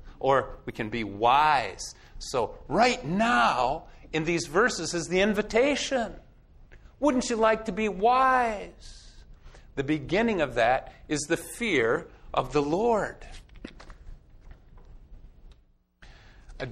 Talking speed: 110 wpm